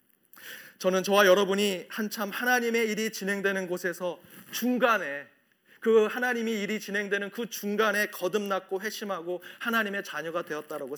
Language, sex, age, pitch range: Korean, male, 30-49, 170-215 Hz